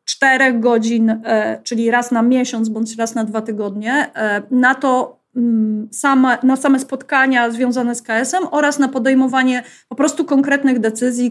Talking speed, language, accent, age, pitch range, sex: 145 wpm, Polish, native, 30-49, 230-275 Hz, female